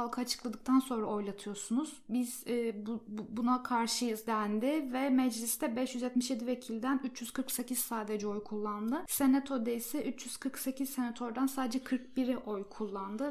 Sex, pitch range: female, 235-265 Hz